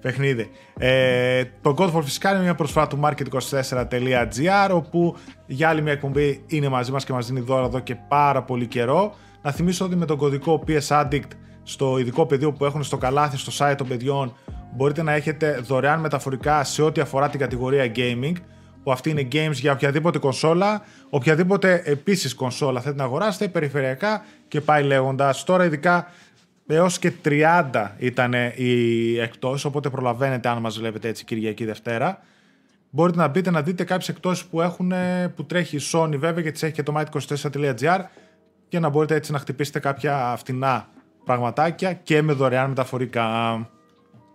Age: 20-39